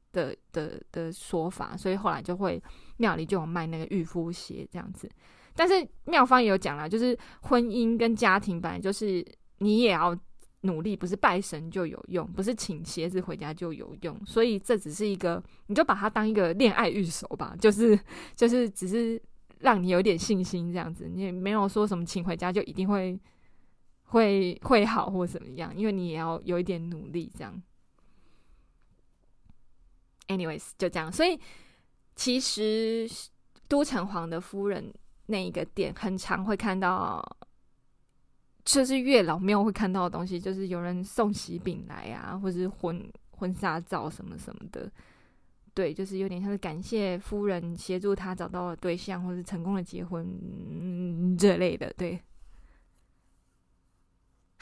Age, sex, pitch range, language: 20-39, female, 175-215 Hz, Chinese